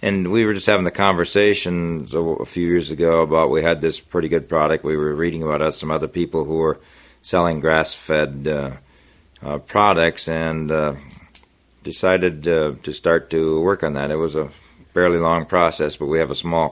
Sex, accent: male, American